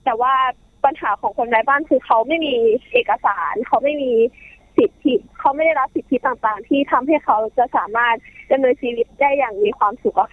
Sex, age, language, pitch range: female, 20-39, Thai, 230-310 Hz